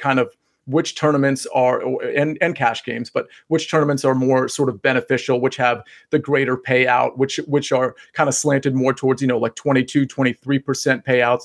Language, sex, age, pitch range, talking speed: English, male, 40-59, 130-155 Hz, 190 wpm